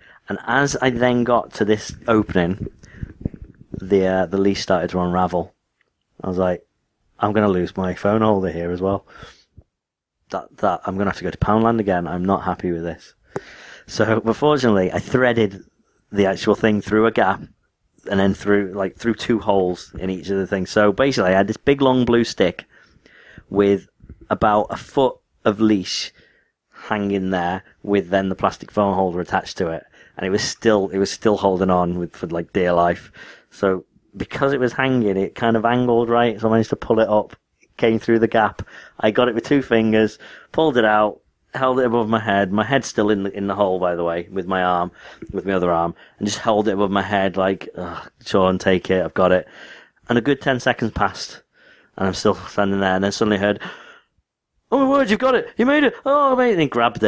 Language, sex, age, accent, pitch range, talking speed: English, male, 30-49, British, 95-115 Hz, 220 wpm